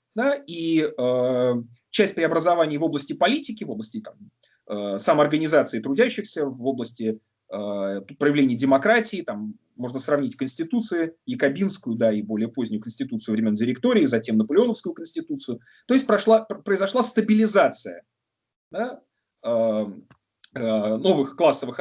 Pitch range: 135-215 Hz